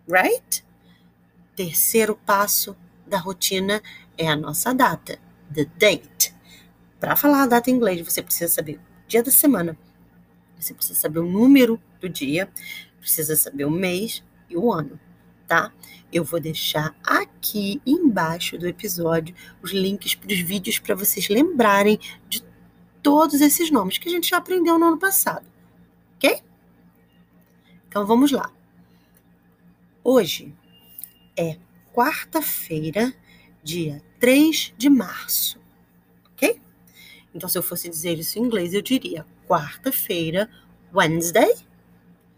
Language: Portuguese